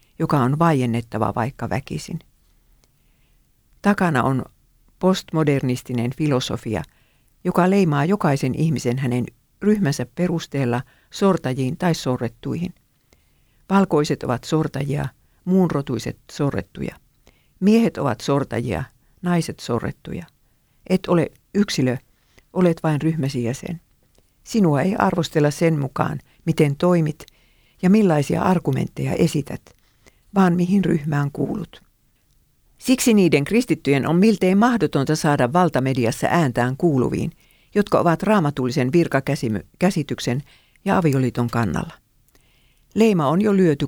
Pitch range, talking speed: 130-175 Hz, 100 wpm